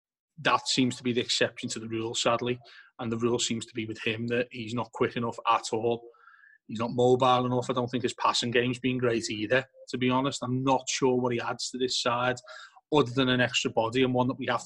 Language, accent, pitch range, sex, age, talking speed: English, British, 120-130 Hz, male, 30-49, 245 wpm